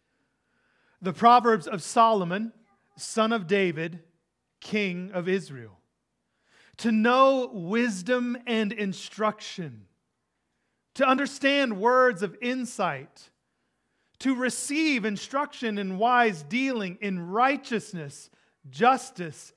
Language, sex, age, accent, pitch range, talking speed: English, male, 40-59, American, 150-230 Hz, 90 wpm